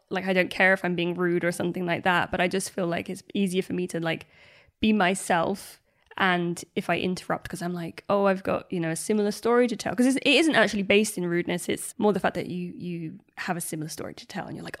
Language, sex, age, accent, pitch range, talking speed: English, female, 10-29, British, 180-205 Hz, 265 wpm